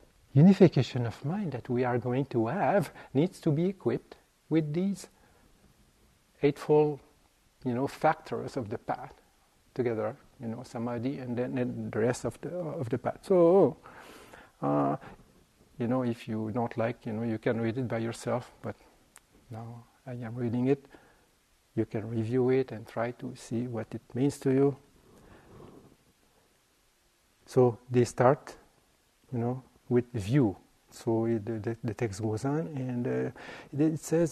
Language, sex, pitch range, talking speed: English, male, 115-140 Hz, 155 wpm